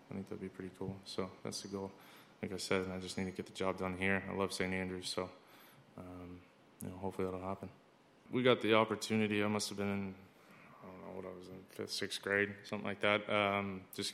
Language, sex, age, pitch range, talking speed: English, male, 20-39, 95-100 Hz, 240 wpm